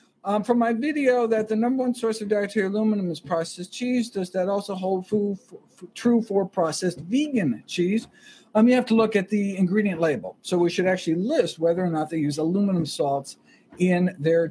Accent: American